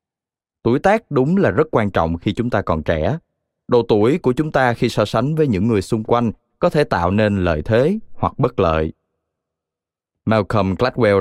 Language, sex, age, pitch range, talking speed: Vietnamese, male, 20-39, 90-125 Hz, 195 wpm